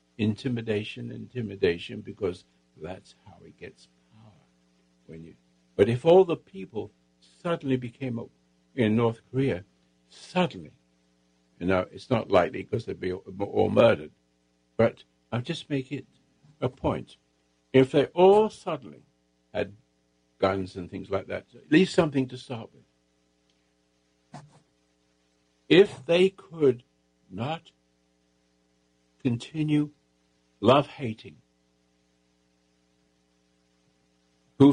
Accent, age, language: American, 60-79, English